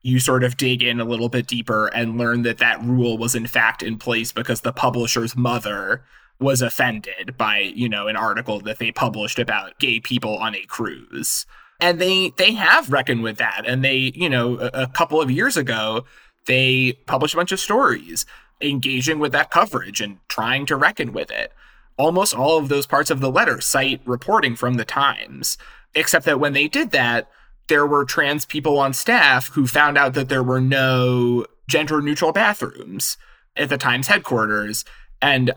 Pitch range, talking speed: 115-145 Hz, 185 wpm